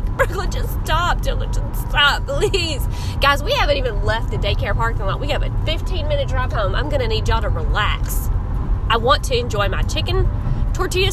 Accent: American